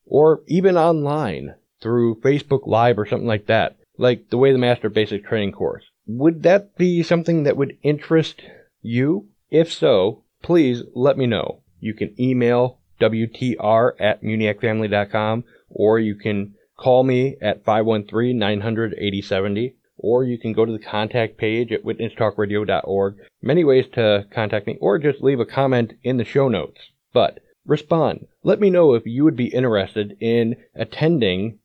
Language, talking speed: English, 155 wpm